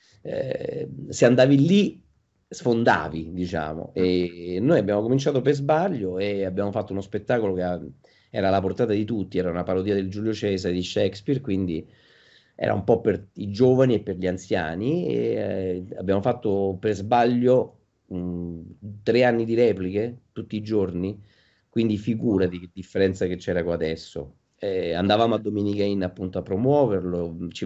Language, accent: Italian, native